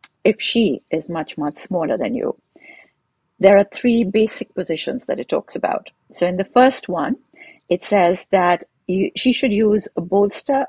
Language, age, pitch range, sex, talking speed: English, 50-69, 175-220 Hz, female, 175 wpm